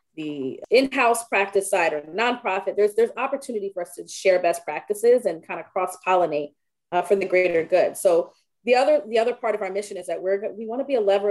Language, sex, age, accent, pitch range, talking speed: English, female, 30-49, American, 175-225 Hz, 230 wpm